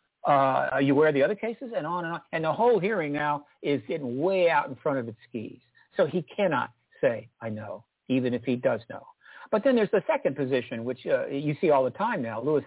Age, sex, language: 60-79, male, English